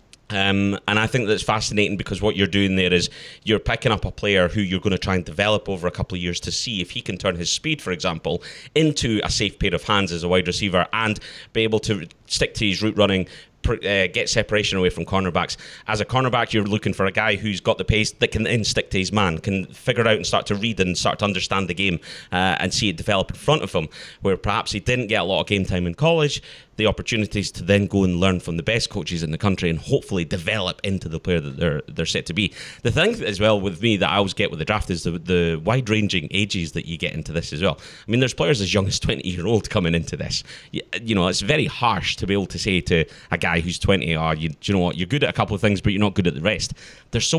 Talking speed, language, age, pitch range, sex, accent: 275 wpm, English, 30-49, 90-110 Hz, male, British